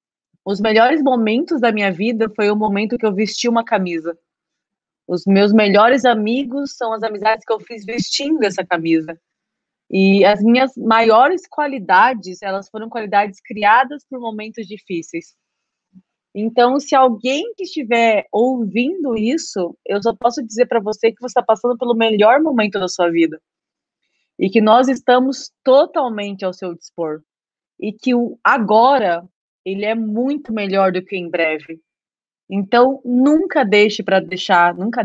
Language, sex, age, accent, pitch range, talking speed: Portuguese, female, 30-49, Brazilian, 190-240 Hz, 150 wpm